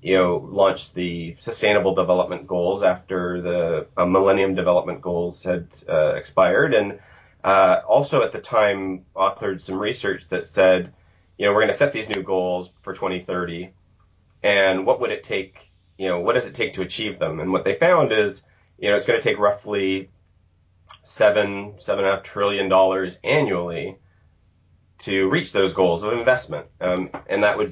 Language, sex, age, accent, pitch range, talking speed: English, male, 30-49, American, 90-100 Hz, 175 wpm